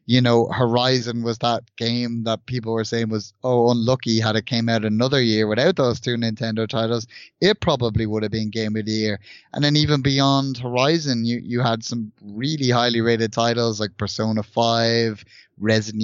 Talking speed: 185 wpm